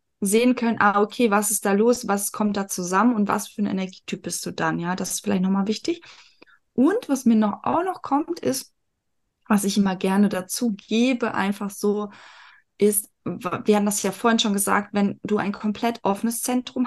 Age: 20-39